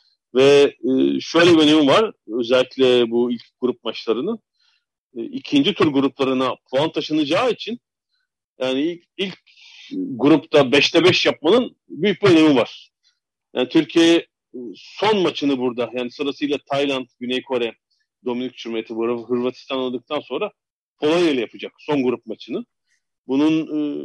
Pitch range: 125-175 Hz